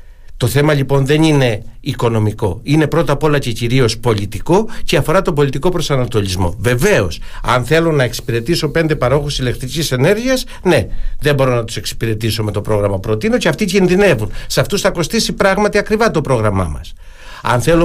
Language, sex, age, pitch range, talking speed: Greek, male, 60-79, 115-170 Hz, 170 wpm